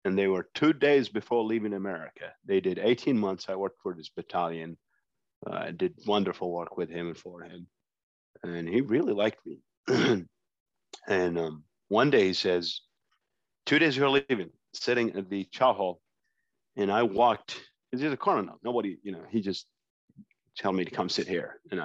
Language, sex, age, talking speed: English, male, 30-49, 175 wpm